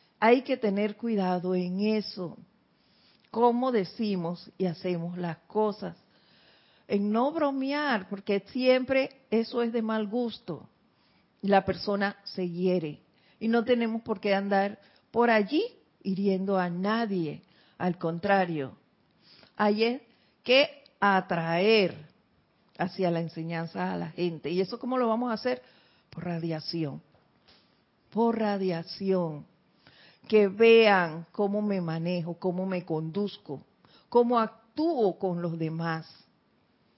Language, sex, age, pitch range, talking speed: Spanish, female, 50-69, 180-230 Hz, 115 wpm